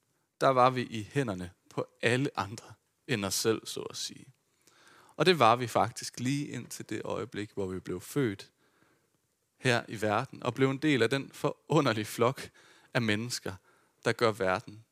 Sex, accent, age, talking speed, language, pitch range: male, native, 30-49, 175 wpm, Danish, 110-140 Hz